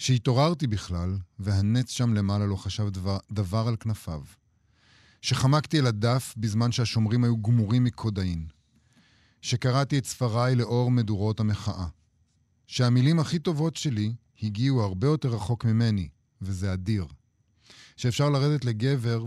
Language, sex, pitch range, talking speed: Hebrew, male, 100-125 Hz, 120 wpm